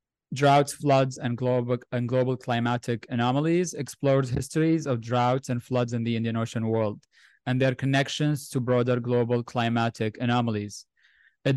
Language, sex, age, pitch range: English, male, 20-39, 115-130 Hz